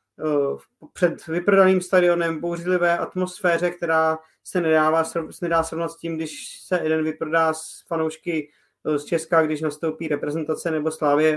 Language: Czech